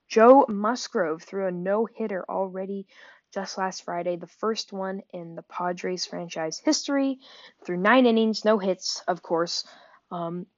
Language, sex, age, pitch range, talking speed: English, female, 10-29, 185-235 Hz, 140 wpm